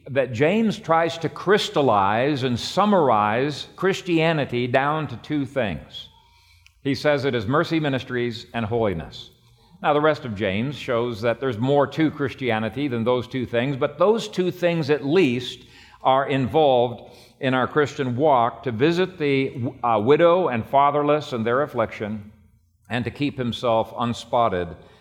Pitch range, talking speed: 115-145 Hz, 150 wpm